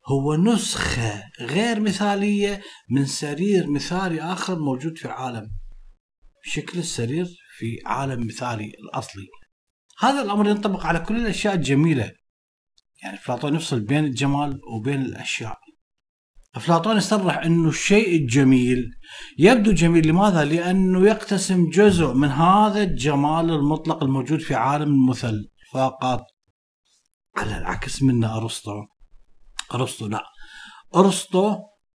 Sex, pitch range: male, 130-175 Hz